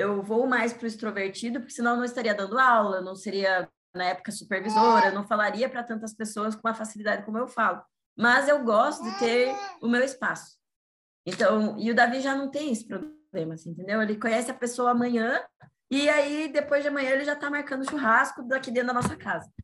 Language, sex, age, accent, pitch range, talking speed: Portuguese, female, 20-39, Brazilian, 210-255 Hz, 210 wpm